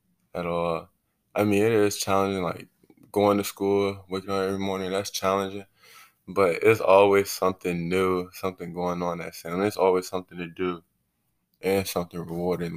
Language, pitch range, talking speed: English, 85-100 Hz, 165 wpm